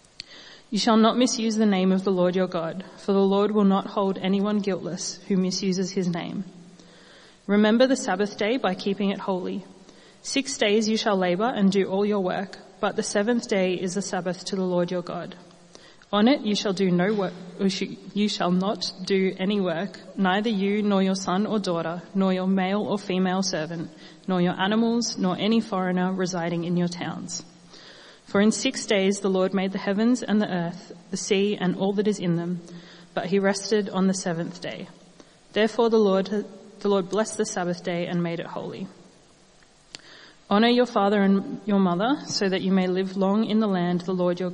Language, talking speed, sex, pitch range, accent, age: English, 200 wpm, female, 185-205 Hz, Australian, 30-49